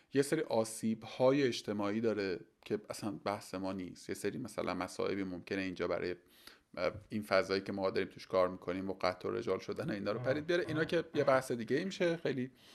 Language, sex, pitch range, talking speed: Persian, male, 110-160 Hz, 195 wpm